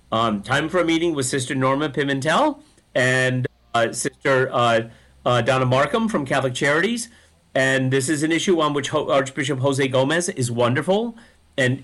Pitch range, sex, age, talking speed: 115-150 Hz, male, 50-69, 160 wpm